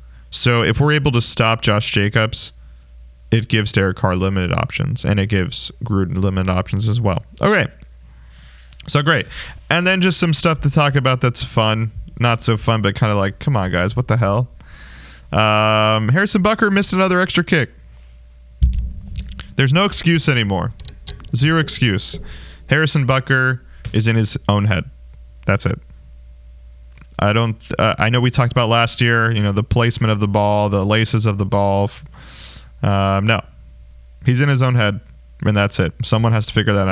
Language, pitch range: English, 85-120 Hz